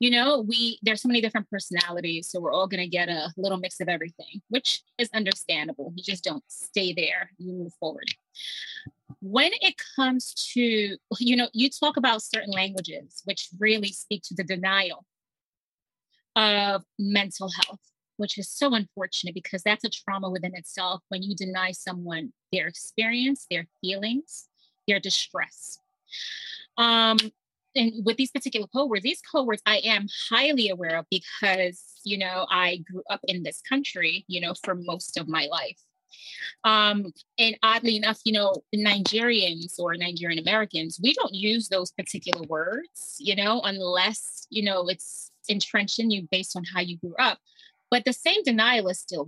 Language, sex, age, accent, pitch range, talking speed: English, female, 20-39, American, 185-235 Hz, 165 wpm